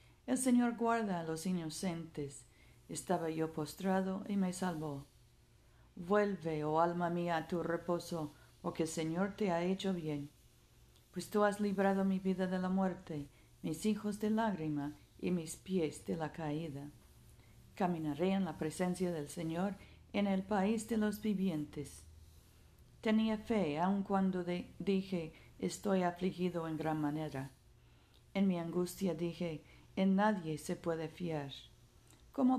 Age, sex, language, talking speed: 50-69, female, Spanish, 140 wpm